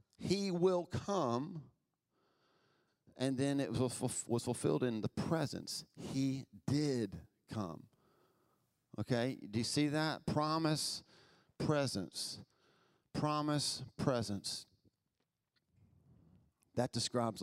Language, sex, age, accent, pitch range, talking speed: English, male, 40-59, American, 110-145 Hz, 85 wpm